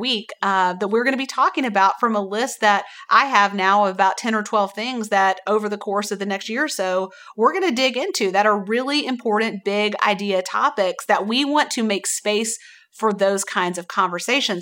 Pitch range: 195-235 Hz